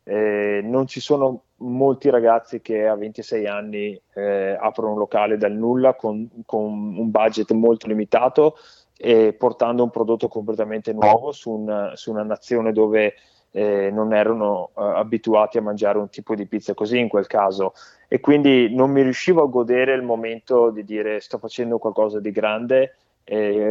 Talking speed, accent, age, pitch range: 165 wpm, native, 20-39, 105-125 Hz